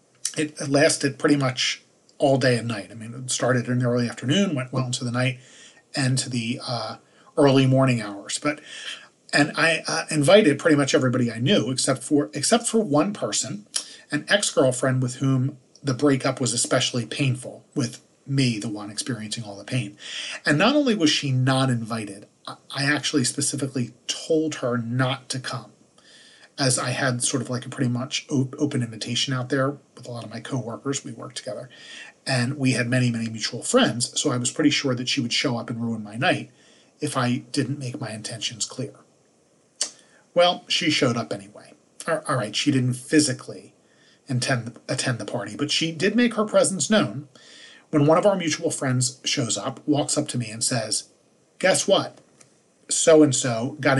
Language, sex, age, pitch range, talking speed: English, male, 40-59, 120-145 Hz, 180 wpm